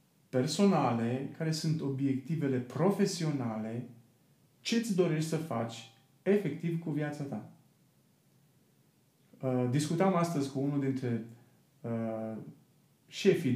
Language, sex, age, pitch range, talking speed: Romanian, male, 30-49, 125-165 Hz, 85 wpm